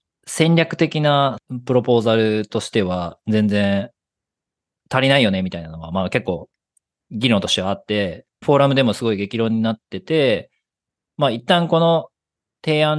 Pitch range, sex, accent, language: 105-150 Hz, male, native, Japanese